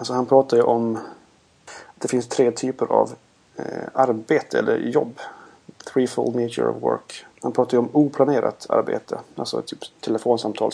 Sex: male